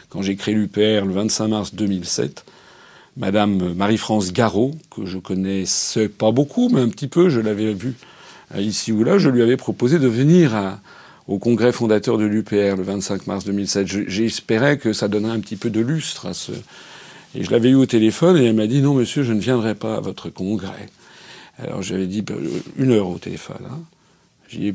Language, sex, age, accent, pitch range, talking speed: French, male, 50-69, French, 105-140 Hz, 210 wpm